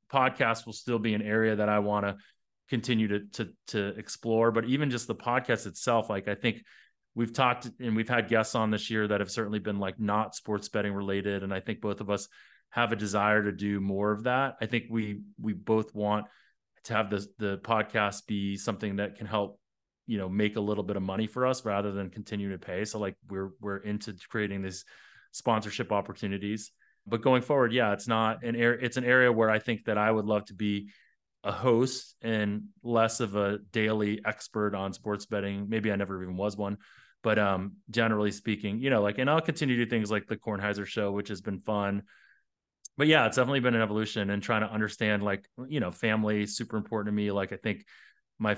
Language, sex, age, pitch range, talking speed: English, male, 30-49, 100-115 Hz, 220 wpm